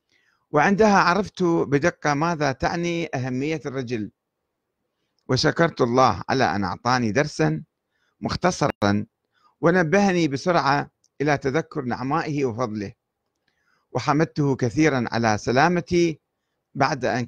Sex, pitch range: male, 110-145 Hz